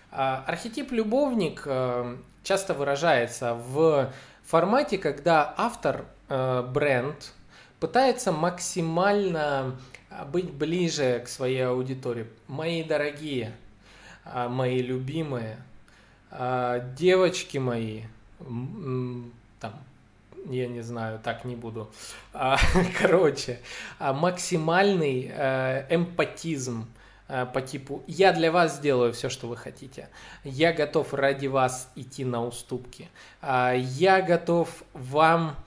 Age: 20-39